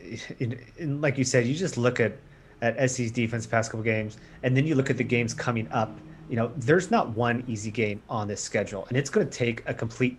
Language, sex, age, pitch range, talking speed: English, male, 30-49, 115-135 Hz, 240 wpm